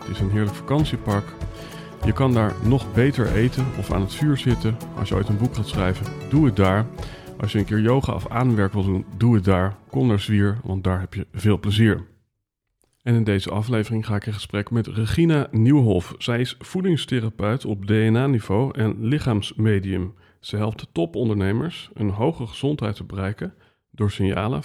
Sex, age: male, 40-59